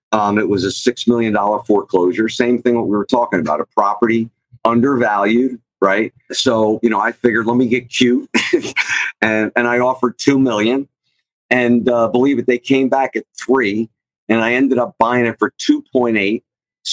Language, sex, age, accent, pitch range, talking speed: English, male, 50-69, American, 115-135 Hz, 175 wpm